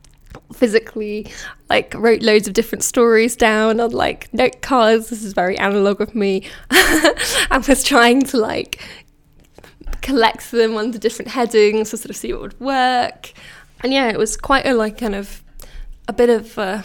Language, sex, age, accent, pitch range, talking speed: English, female, 10-29, British, 205-235 Hz, 165 wpm